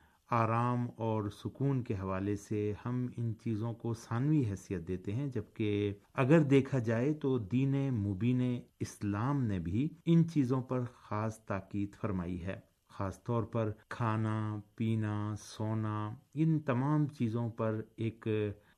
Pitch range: 105-125 Hz